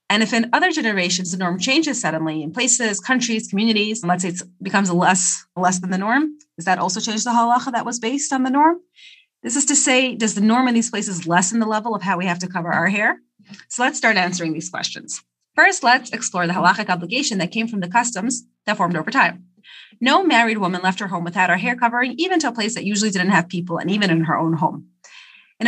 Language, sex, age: English, female, 30-49